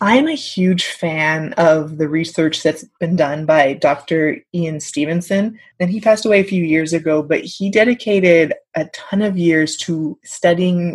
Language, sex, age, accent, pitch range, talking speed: English, female, 20-39, American, 160-185 Hz, 170 wpm